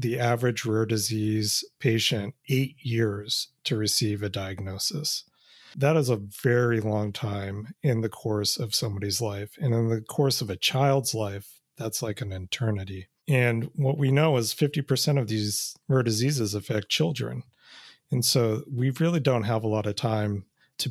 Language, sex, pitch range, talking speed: English, male, 110-135 Hz, 165 wpm